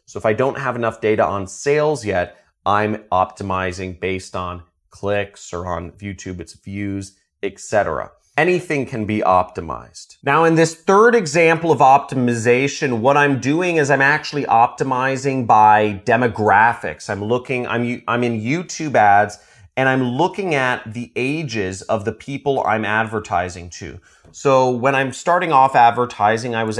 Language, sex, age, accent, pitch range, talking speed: English, male, 30-49, American, 100-135 Hz, 150 wpm